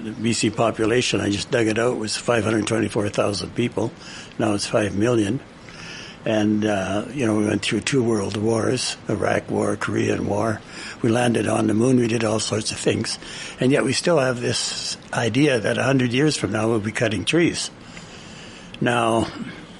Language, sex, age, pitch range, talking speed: English, male, 60-79, 105-125 Hz, 170 wpm